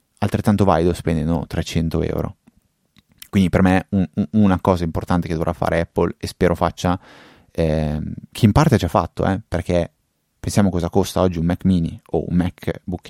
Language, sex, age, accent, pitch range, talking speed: Italian, male, 30-49, native, 80-95 Hz, 190 wpm